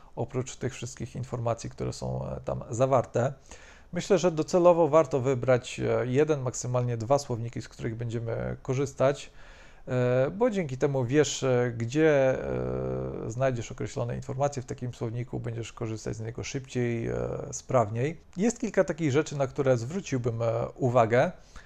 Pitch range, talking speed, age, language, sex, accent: 115-140 Hz, 125 wpm, 40-59, Polish, male, native